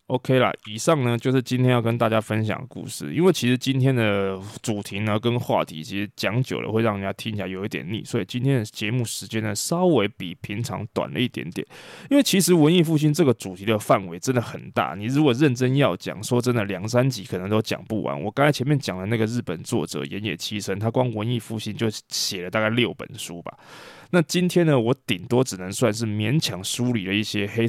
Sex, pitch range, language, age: male, 105-130 Hz, Chinese, 20-39